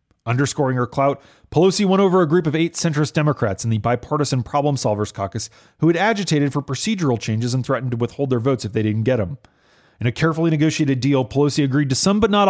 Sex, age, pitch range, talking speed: male, 30-49, 115-150 Hz, 220 wpm